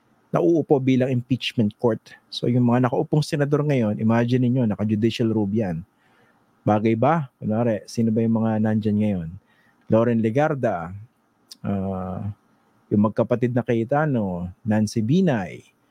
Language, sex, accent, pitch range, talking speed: English, male, Filipino, 110-155 Hz, 130 wpm